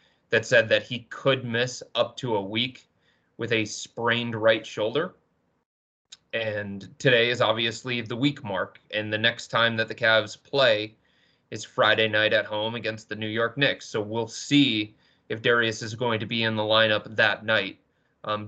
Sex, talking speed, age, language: male, 180 wpm, 30-49, English